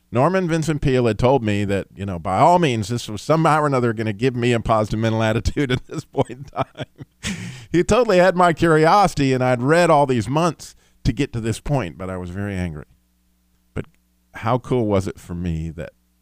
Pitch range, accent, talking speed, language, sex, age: 90-125 Hz, American, 220 wpm, English, male, 50-69